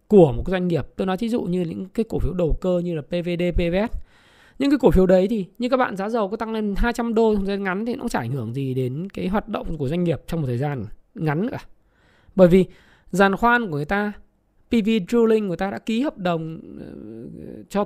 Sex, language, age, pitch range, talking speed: male, Vietnamese, 20-39, 170-235 Hz, 250 wpm